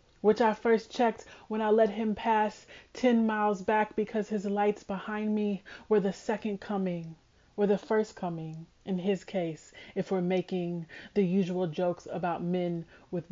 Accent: American